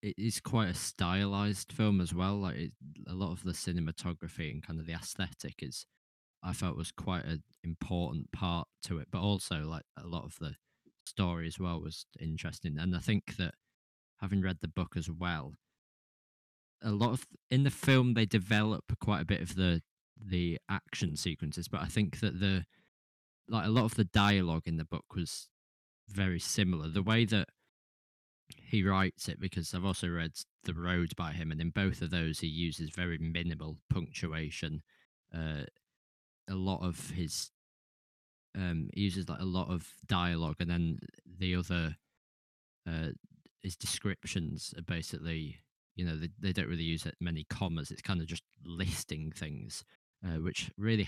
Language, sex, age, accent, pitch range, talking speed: English, male, 20-39, British, 80-95 Hz, 175 wpm